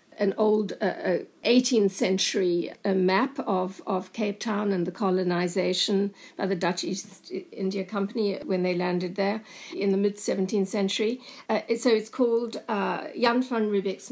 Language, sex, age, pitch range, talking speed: English, female, 60-79, 195-235 Hz, 150 wpm